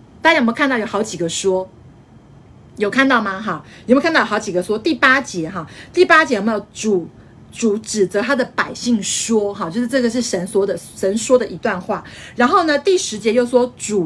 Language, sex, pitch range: Chinese, female, 195-275 Hz